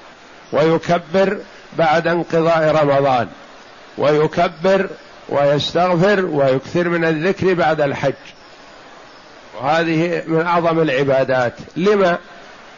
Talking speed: 75 wpm